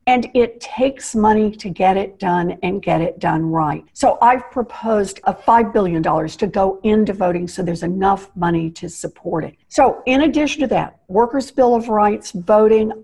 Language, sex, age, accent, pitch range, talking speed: English, female, 60-79, American, 180-235 Hz, 200 wpm